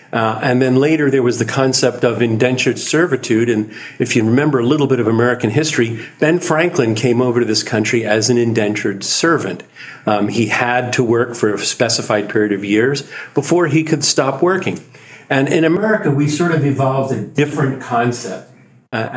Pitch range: 115-145 Hz